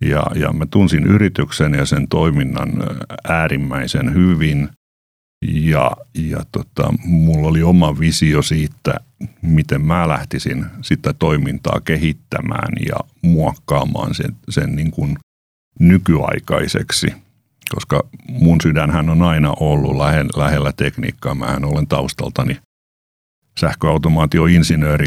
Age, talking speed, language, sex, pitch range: 50-69, 105 wpm, Finnish, male, 75-85 Hz